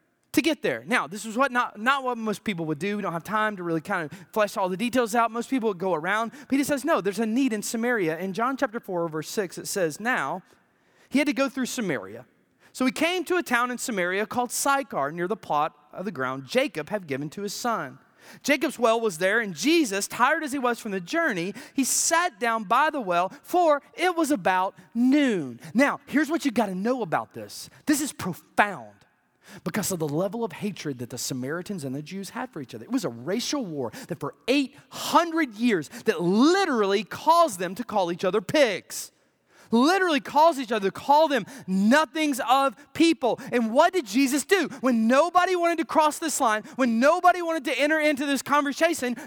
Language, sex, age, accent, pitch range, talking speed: English, male, 30-49, American, 205-295 Hz, 215 wpm